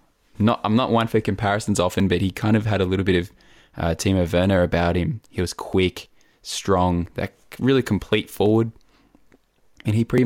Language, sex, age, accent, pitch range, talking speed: English, male, 10-29, Australian, 85-95 Hz, 185 wpm